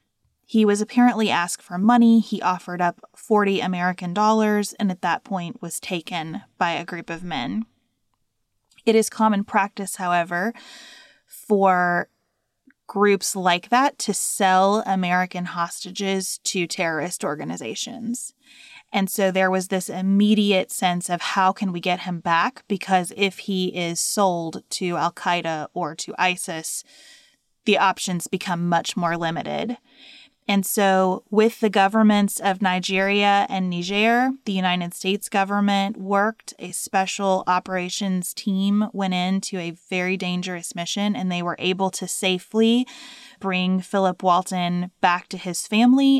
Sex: female